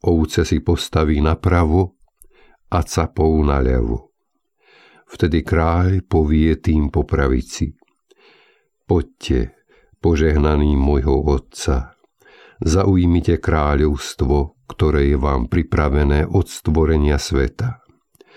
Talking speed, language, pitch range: 85 wpm, Slovak, 70-95 Hz